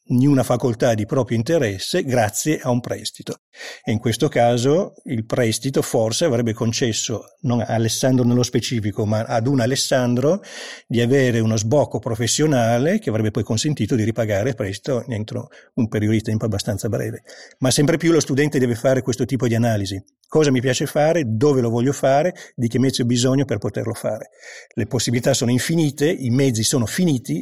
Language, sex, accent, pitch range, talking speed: Italian, male, native, 110-130 Hz, 180 wpm